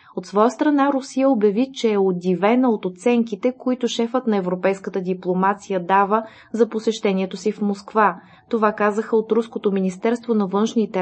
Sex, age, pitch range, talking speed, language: female, 20-39, 190-230 Hz, 155 wpm, Bulgarian